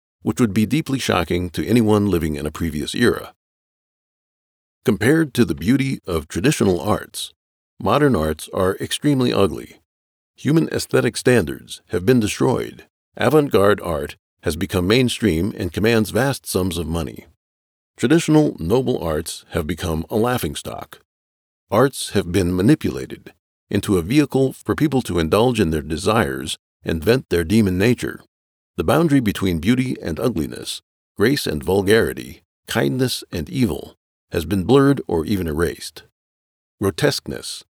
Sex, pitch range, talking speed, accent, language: male, 80-125 Hz, 135 wpm, American, English